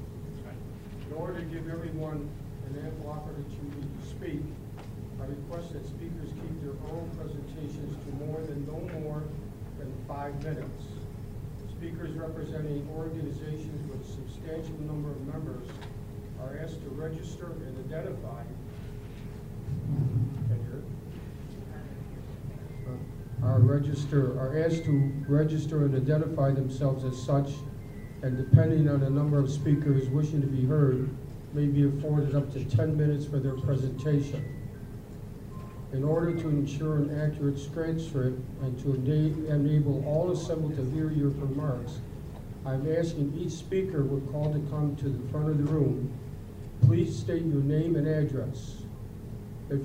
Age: 50-69